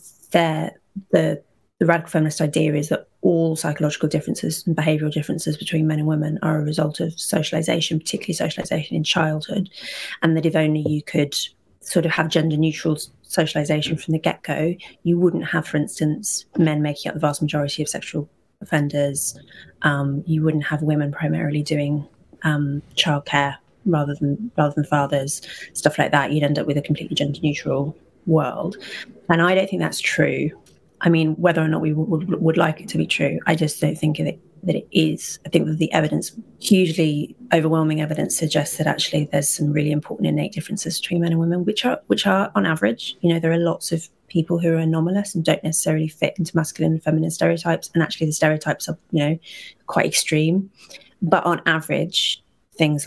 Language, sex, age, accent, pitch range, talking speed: English, female, 30-49, British, 150-165 Hz, 190 wpm